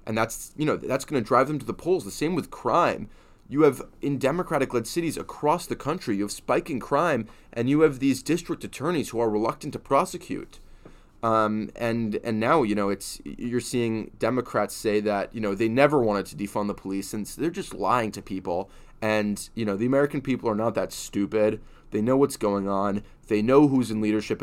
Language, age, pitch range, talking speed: English, 20-39, 105-130 Hz, 215 wpm